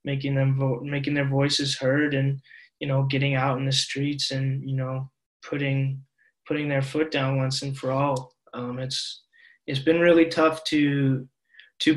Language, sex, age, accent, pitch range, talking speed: English, male, 20-39, American, 130-145 Hz, 175 wpm